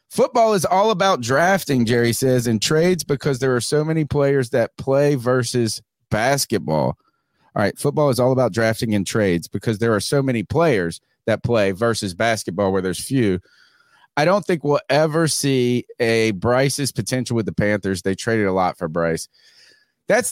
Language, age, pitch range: English, 40-59, 105-150 Hz